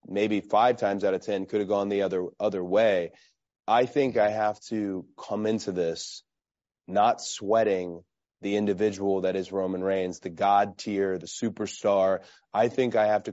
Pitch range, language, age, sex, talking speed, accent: 95-110 Hz, English, 30-49, male, 175 wpm, American